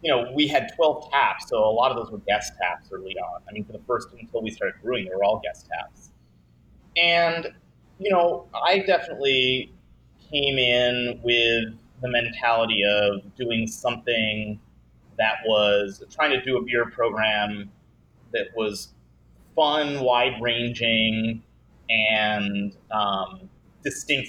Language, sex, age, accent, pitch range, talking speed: English, male, 30-49, American, 100-125 Hz, 145 wpm